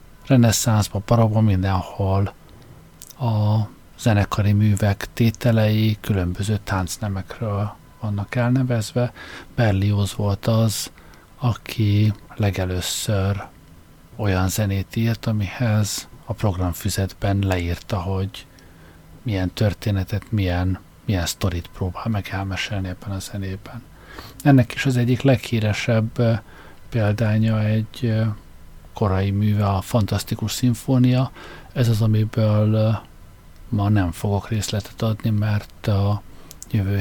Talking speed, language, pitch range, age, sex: 95 wpm, Hungarian, 95-115 Hz, 50-69, male